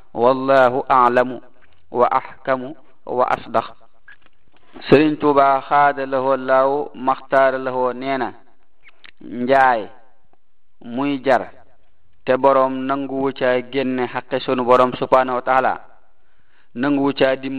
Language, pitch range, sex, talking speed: French, 125-140 Hz, male, 75 wpm